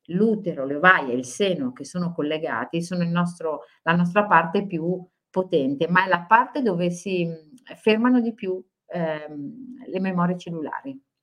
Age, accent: 50-69, native